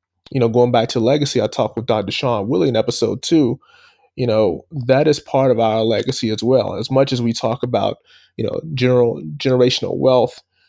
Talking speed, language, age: 200 wpm, English, 20-39